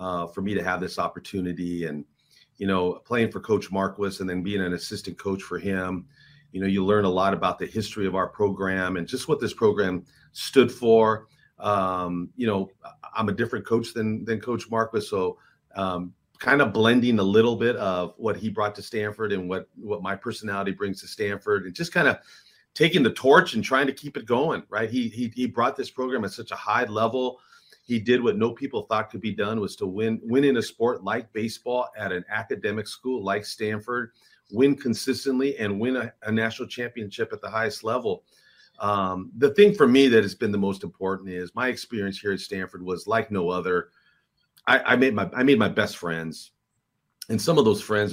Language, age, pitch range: English, 40-59, 95-120 Hz